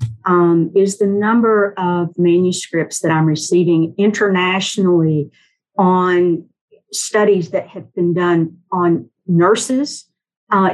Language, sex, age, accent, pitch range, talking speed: English, female, 50-69, American, 170-210 Hz, 105 wpm